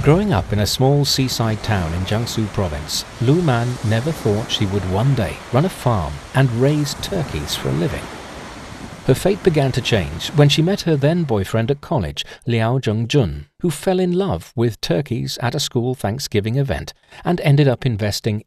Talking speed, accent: 185 wpm, British